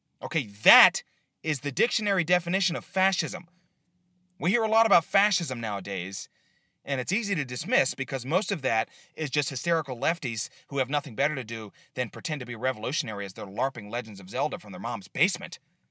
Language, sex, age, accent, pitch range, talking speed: English, male, 30-49, American, 125-185 Hz, 185 wpm